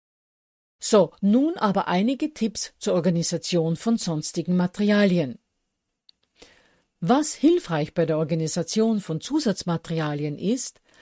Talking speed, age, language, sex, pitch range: 100 wpm, 50-69, German, female, 170-220 Hz